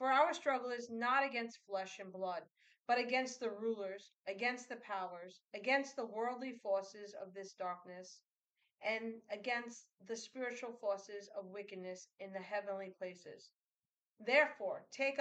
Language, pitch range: English, 205-275 Hz